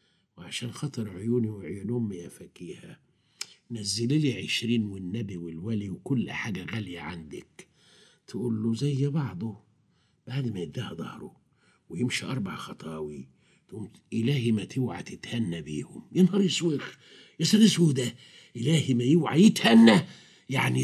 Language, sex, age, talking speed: Arabic, male, 50-69, 120 wpm